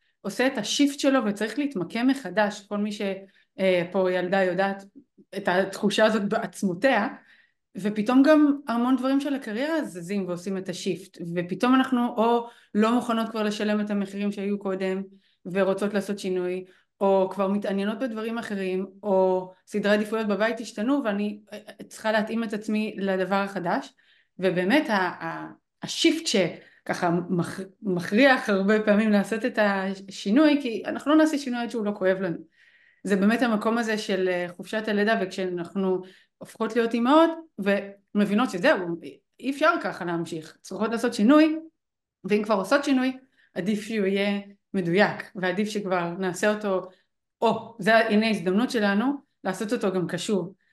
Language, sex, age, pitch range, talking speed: Hebrew, female, 30-49, 190-235 Hz, 145 wpm